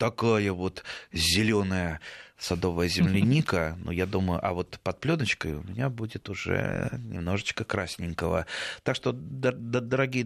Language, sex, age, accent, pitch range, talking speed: Russian, male, 30-49, native, 105-140 Hz, 130 wpm